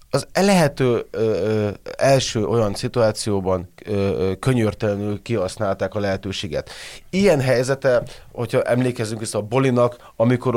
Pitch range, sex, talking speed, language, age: 110-130 Hz, male, 110 wpm, Hungarian, 30-49